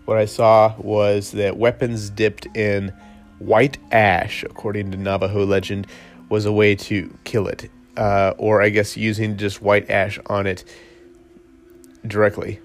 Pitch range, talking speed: 100-110 Hz, 145 wpm